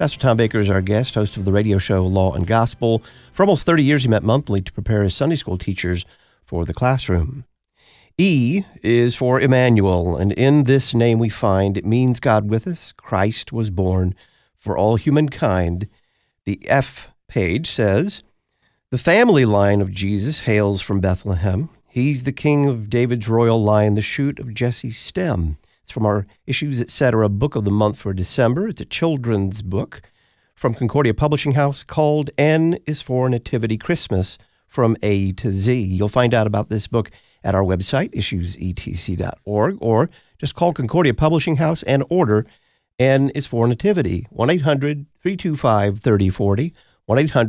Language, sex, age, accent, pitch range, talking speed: English, male, 50-69, American, 100-140 Hz, 160 wpm